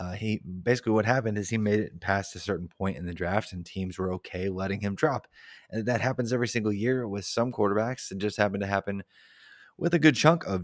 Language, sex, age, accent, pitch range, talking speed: English, male, 20-39, American, 95-125 Hz, 235 wpm